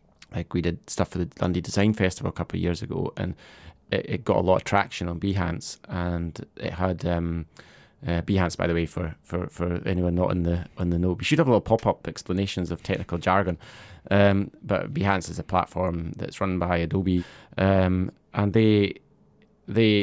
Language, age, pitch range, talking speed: English, 20-39, 85-100 Hz, 205 wpm